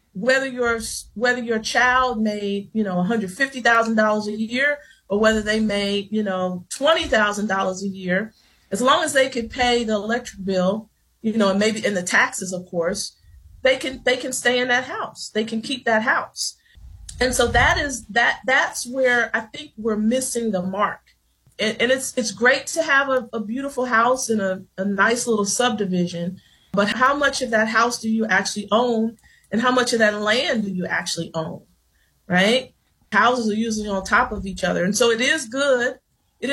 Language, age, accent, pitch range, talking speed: English, 40-59, American, 200-250 Hz, 200 wpm